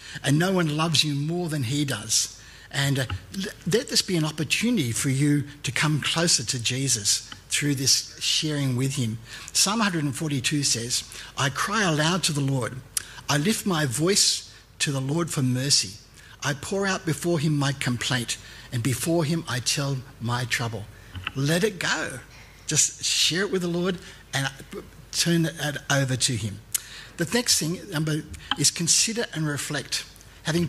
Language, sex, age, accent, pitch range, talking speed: English, male, 60-79, Australian, 125-165 Hz, 160 wpm